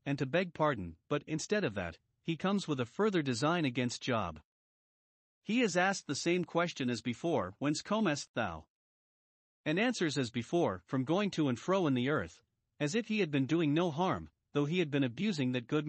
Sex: male